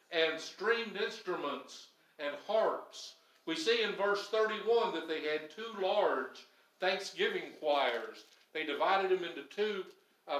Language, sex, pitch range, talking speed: English, male, 160-210 Hz, 135 wpm